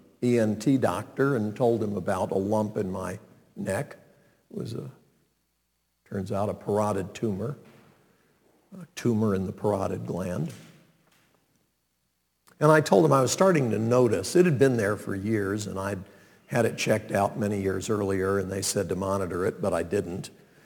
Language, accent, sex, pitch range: English, American, male, 100-130 Hz